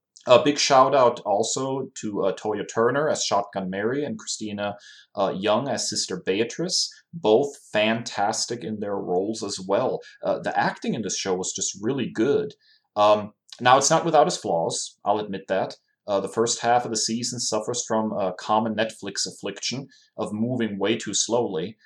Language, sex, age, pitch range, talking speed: English, male, 30-49, 105-130 Hz, 175 wpm